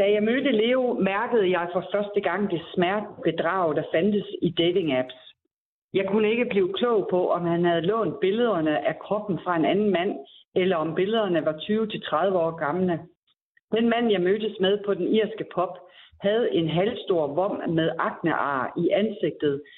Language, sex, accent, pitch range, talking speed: Danish, female, native, 165-210 Hz, 170 wpm